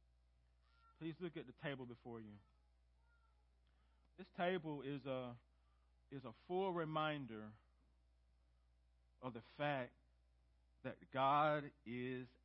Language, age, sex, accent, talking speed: English, 40-59, male, American, 95 wpm